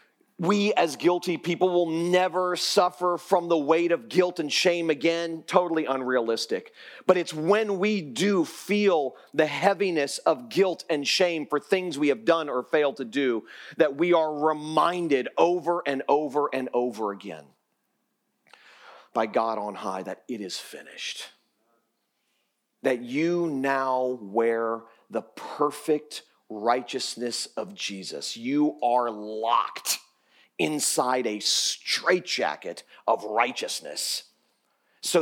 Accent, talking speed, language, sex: American, 125 wpm, English, male